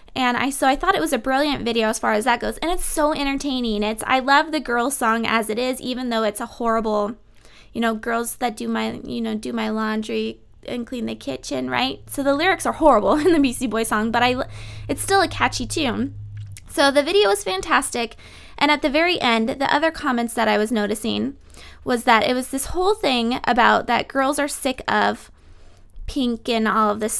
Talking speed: 225 wpm